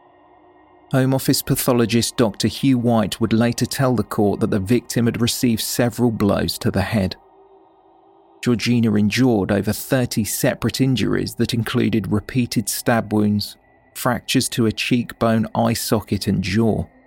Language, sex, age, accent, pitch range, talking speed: English, male, 40-59, British, 105-130 Hz, 140 wpm